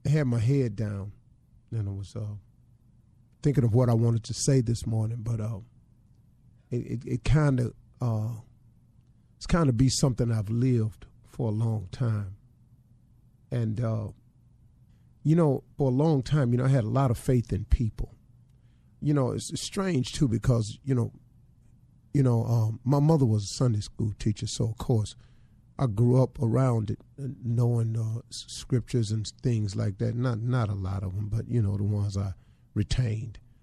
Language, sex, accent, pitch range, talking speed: English, male, American, 115-130 Hz, 185 wpm